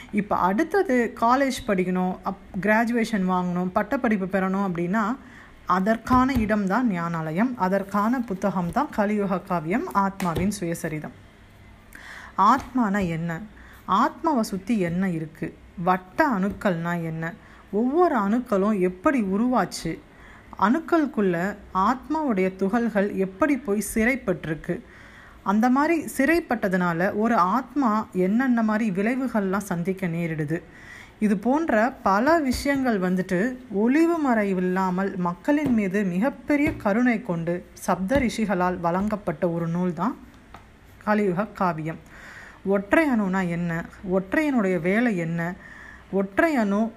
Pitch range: 185-240 Hz